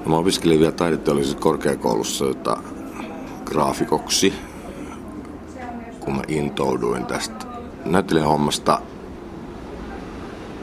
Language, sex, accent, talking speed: Finnish, male, native, 75 wpm